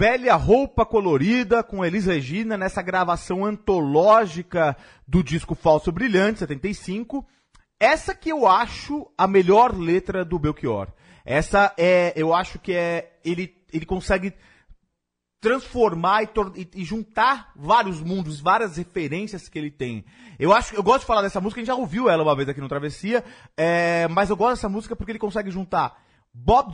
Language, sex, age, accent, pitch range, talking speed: Portuguese, male, 30-49, Brazilian, 155-215 Hz, 165 wpm